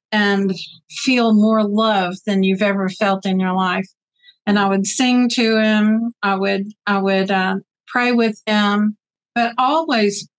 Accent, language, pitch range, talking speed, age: American, English, 195-230 Hz, 155 wpm, 50-69